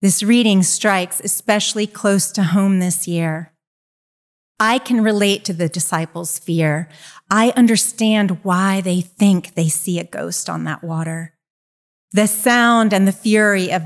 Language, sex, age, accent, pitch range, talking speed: English, female, 30-49, American, 170-210 Hz, 145 wpm